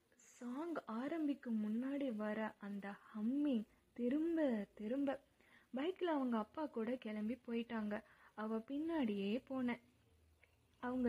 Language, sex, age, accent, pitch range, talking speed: Tamil, female, 20-39, native, 215-280 Hz, 85 wpm